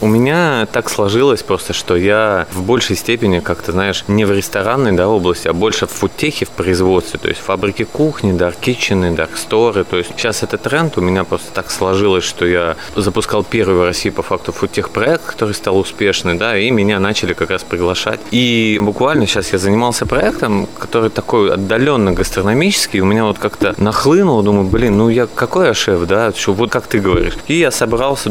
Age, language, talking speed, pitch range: 20-39, Russian, 195 wpm, 95-110 Hz